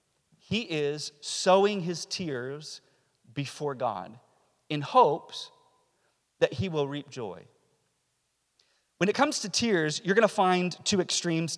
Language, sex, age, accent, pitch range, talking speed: English, male, 40-59, American, 145-190 Hz, 130 wpm